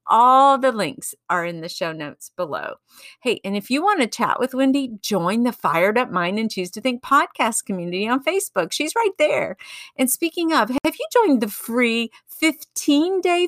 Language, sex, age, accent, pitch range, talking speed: English, female, 50-69, American, 200-300 Hz, 190 wpm